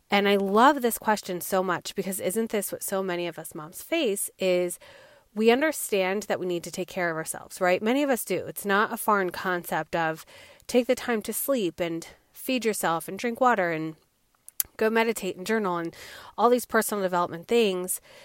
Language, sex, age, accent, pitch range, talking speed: English, female, 30-49, American, 180-220 Hz, 200 wpm